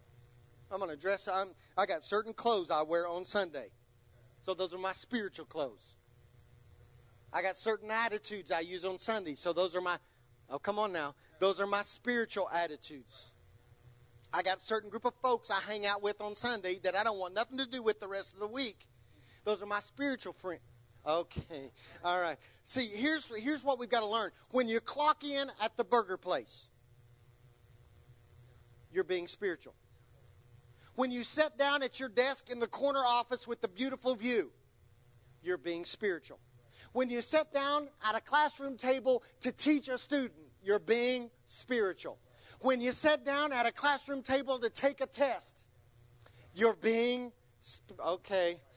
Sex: male